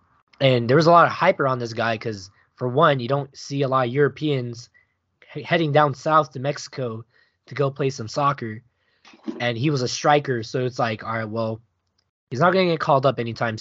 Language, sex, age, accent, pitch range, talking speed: English, male, 20-39, American, 120-155 Hz, 215 wpm